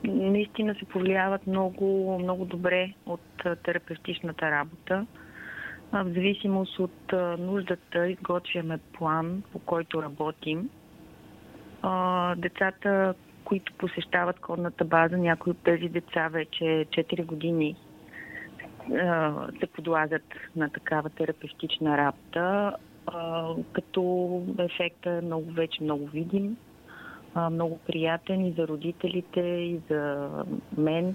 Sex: female